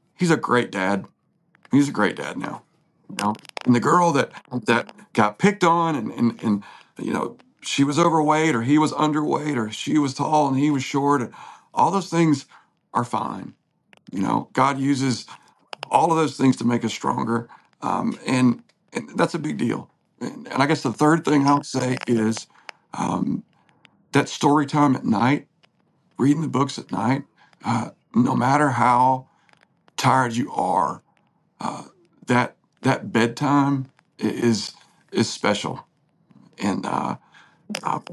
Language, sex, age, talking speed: English, male, 50-69, 160 wpm